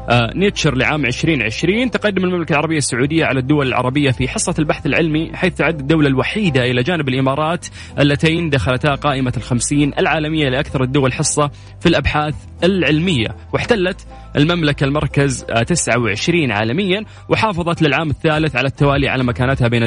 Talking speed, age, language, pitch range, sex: 135 wpm, 20-39, English, 125-155 Hz, male